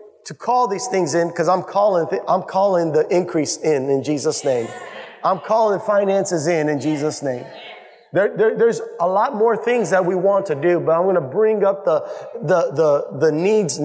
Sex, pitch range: male, 175-215 Hz